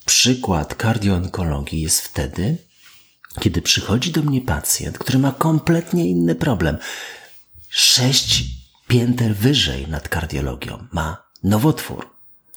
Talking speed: 100 wpm